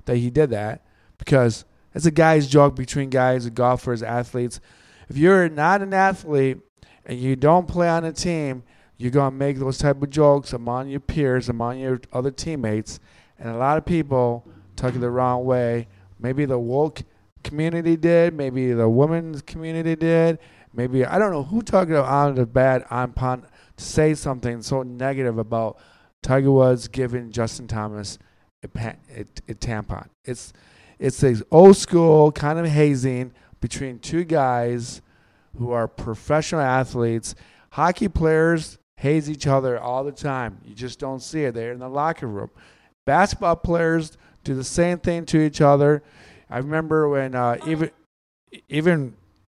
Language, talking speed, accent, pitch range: English, 160 wpm, American, 120-150 Hz